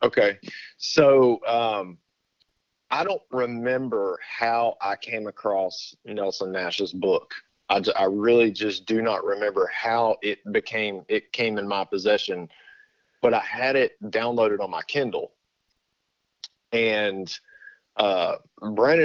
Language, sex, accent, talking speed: English, male, American, 125 wpm